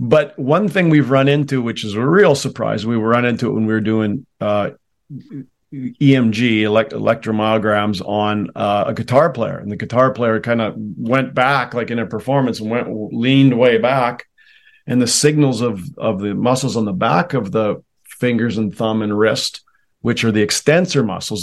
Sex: male